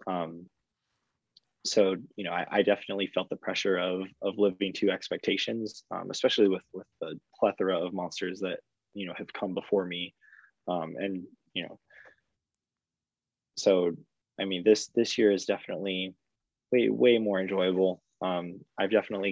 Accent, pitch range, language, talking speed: American, 95-110 Hz, English, 150 wpm